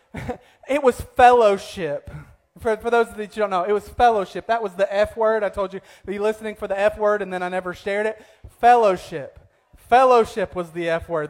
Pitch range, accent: 180-225 Hz, American